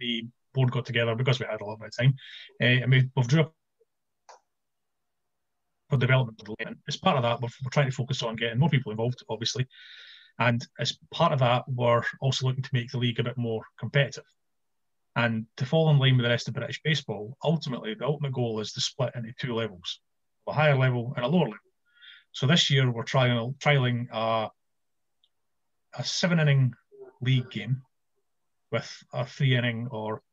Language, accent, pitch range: English, British, 115-140 Hz